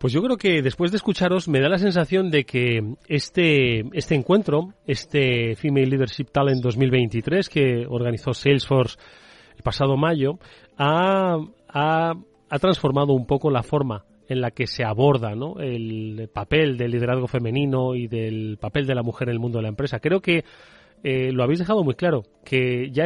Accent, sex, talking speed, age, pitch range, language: Spanish, male, 180 wpm, 30-49, 125-160 Hz, Spanish